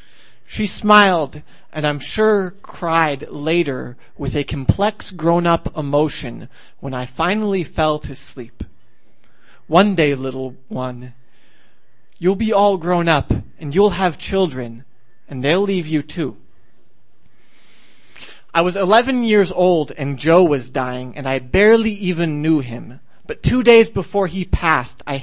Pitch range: 140-190 Hz